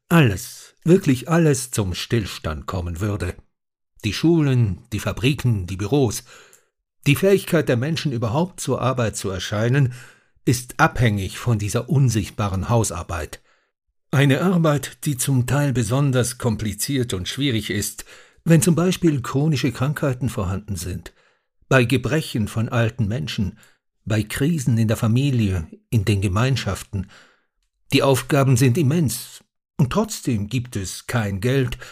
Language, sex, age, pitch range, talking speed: German, male, 60-79, 110-140 Hz, 130 wpm